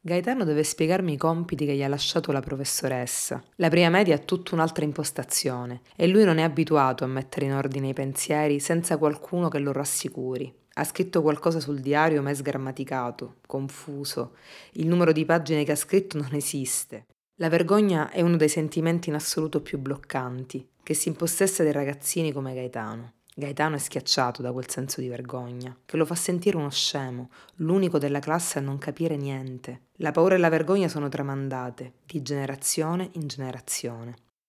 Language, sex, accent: Italian, female, native